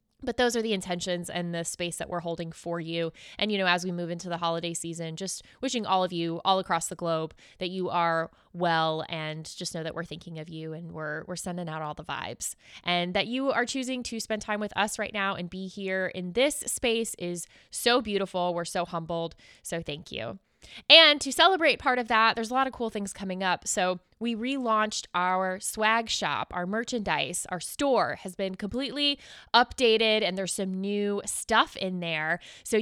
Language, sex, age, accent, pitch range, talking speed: English, female, 20-39, American, 170-215 Hz, 210 wpm